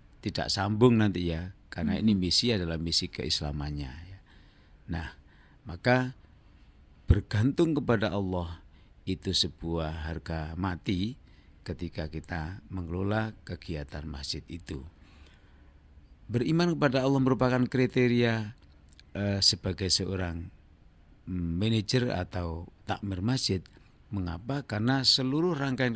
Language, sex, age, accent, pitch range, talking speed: Indonesian, male, 50-69, native, 85-110 Hz, 90 wpm